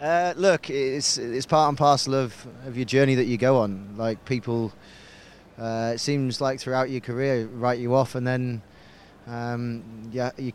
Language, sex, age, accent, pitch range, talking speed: English, male, 20-39, British, 115-130 Hz, 180 wpm